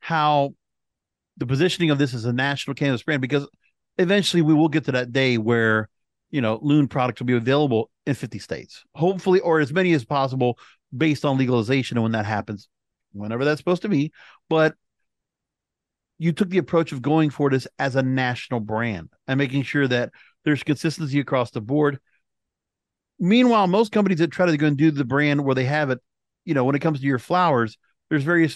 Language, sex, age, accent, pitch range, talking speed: English, male, 40-59, American, 130-155 Hz, 195 wpm